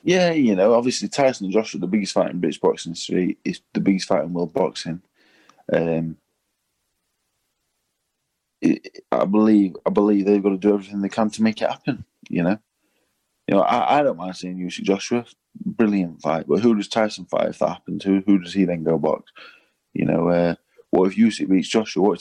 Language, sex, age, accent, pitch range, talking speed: English, male, 20-39, British, 90-110 Hz, 210 wpm